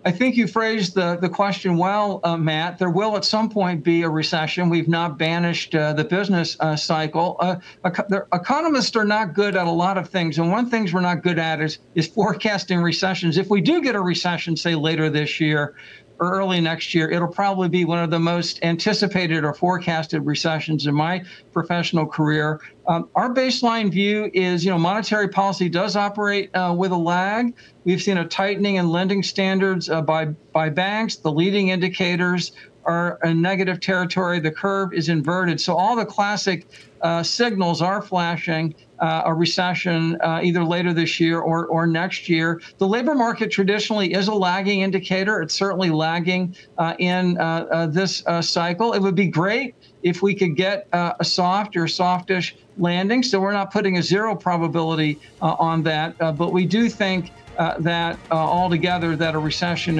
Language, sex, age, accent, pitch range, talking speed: English, male, 60-79, American, 165-195 Hz, 190 wpm